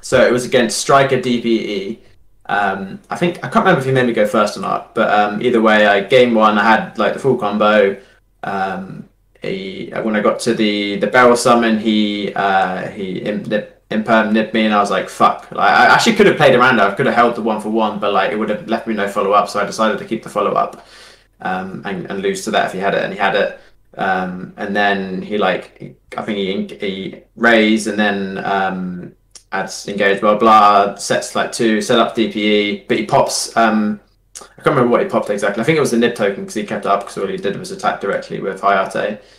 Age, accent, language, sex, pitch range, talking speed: 20-39, British, English, male, 105-120 Hz, 235 wpm